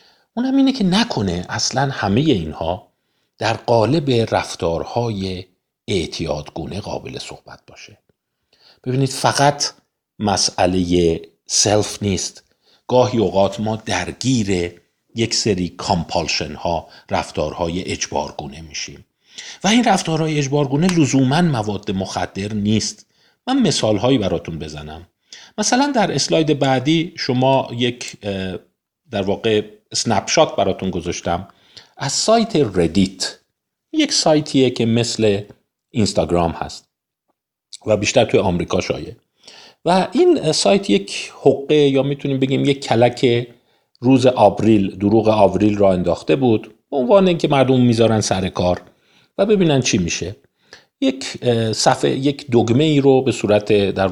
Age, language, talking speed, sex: 50-69, Persian, 110 wpm, male